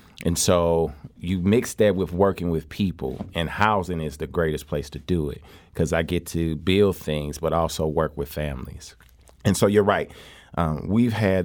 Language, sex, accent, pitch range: English, male, American, 80-95 Hz